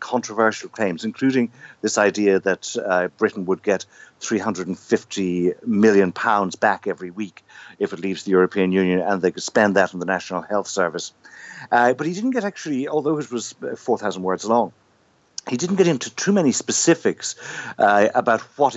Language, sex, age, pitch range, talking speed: English, male, 60-79, 95-135 Hz, 170 wpm